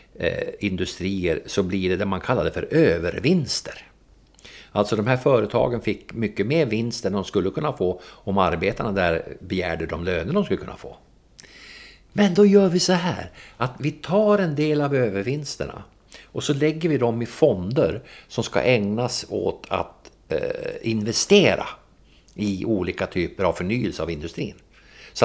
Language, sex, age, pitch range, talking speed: English, male, 50-69, 90-150 Hz, 155 wpm